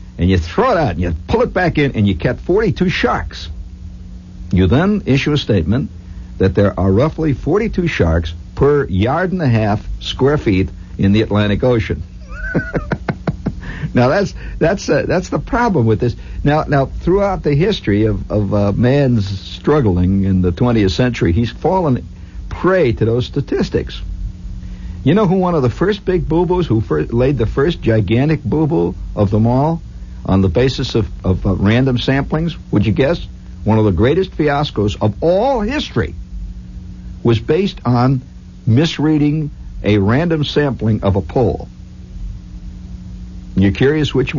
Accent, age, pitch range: American, 60-79, 90-135 Hz